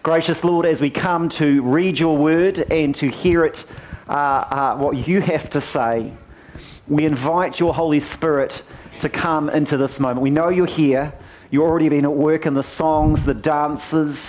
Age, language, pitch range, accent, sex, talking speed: 40-59, English, 135-165 Hz, Australian, male, 185 wpm